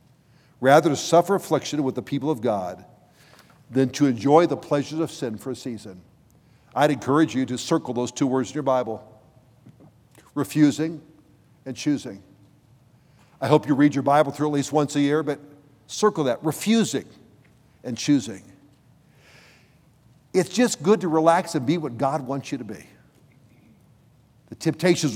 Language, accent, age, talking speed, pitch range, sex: English, American, 60-79, 155 wpm, 130-160 Hz, male